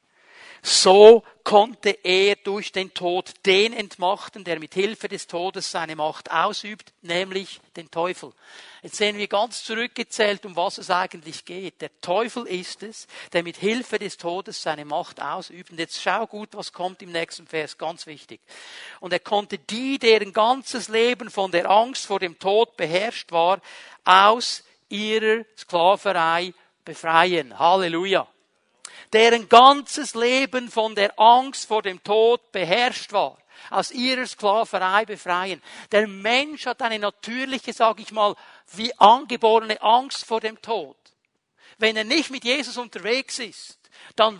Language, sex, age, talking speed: German, male, 50-69, 145 wpm